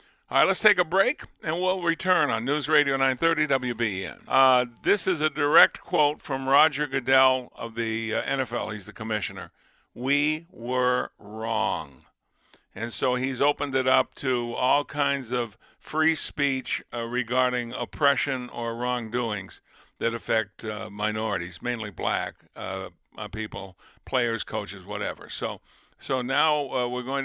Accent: American